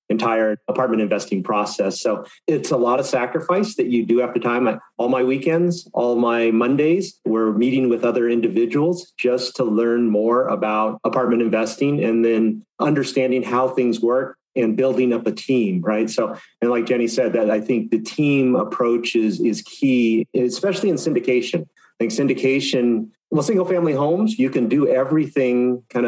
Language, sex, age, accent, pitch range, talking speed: English, male, 30-49, American, 120-150 Hz, 175 wpm